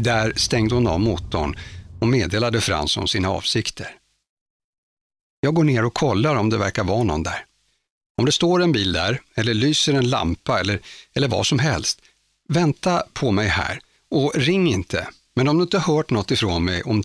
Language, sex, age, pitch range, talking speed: Swedish, male, 60-79, 95-125 Hz, 185 wpm